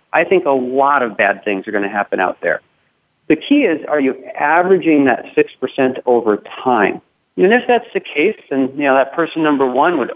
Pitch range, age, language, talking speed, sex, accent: 130-170 Hz, 40-59, English, 215 wpm, male, American